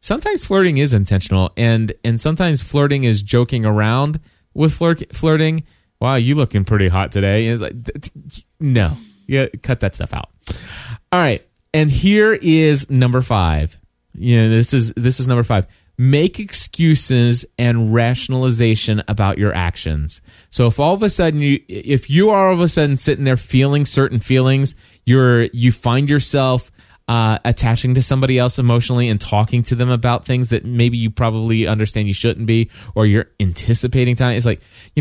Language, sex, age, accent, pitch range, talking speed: English, male, 20-39, American, 110-145 Hz, 175 wpm